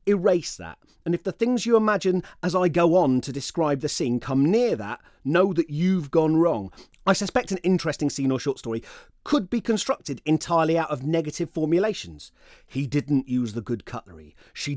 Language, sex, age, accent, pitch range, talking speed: English, male, 30-49, British, 120-165 Hz, 190 wpm